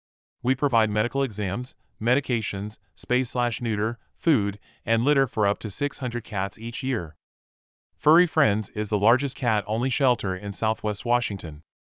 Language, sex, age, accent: English, male, 30-49, American